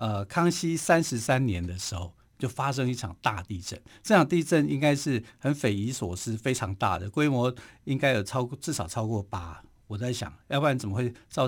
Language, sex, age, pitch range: Chinese, male, 50-69, 105-140 Hz